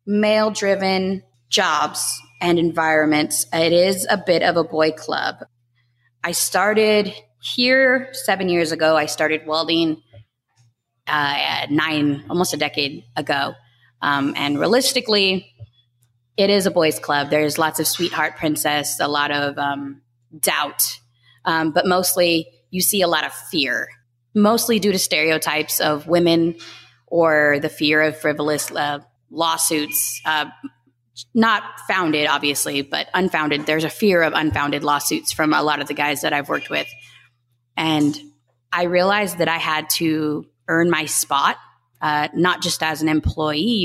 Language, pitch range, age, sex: English, 145-175 Hz, 20-39, female